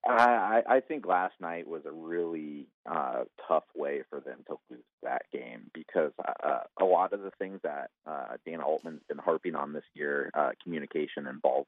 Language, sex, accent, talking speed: English, male, American, 185 wpm